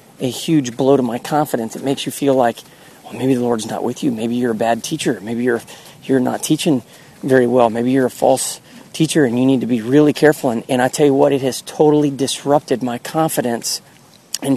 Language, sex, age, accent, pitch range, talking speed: English, male, 40-59, American, 125-145 Hz, 225 wpm